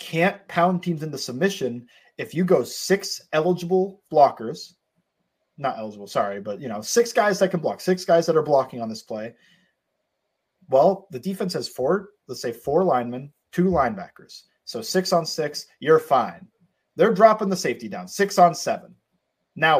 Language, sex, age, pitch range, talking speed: English, male, 30-49, 125-185 Hz, 170 wpm